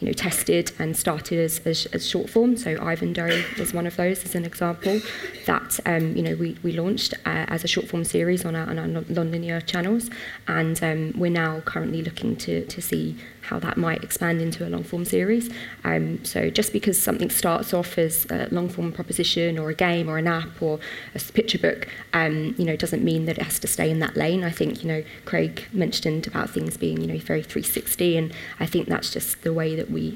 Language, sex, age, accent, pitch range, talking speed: English, female, 20-39, British, 155-175 Hz, 230 wpm